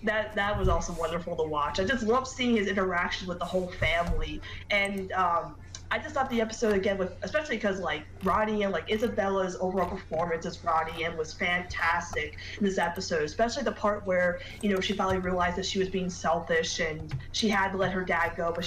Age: 20-39